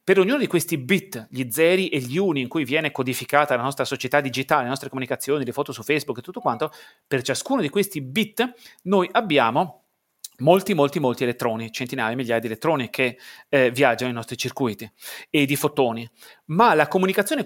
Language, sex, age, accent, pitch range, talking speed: Italian, male, 30-49, native, 135-205 Hz, 190 wpm